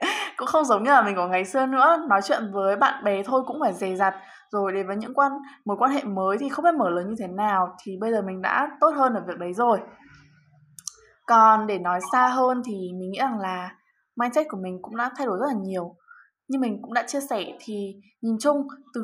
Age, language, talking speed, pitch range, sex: 10-29, Vietnamese, 245 wpm, 195-270 Hz, female